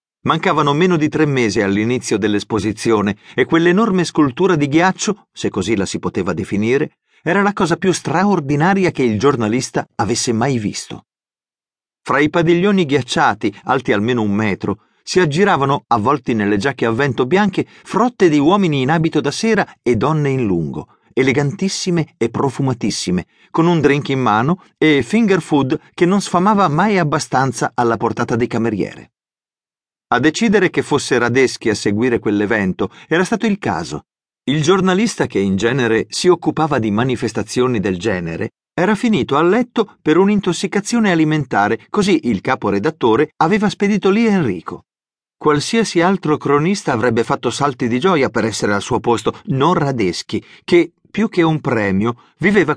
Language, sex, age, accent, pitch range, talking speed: Italian, male, 50-69, native, 120-185 Hz, 150 wpm